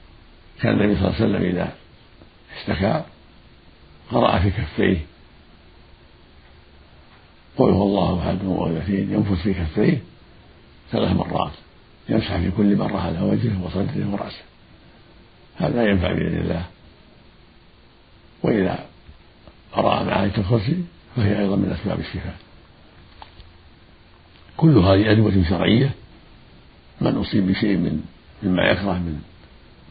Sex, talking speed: male, 100 wpm